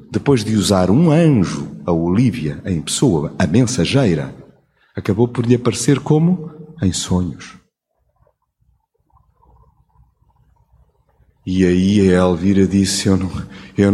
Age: 50-69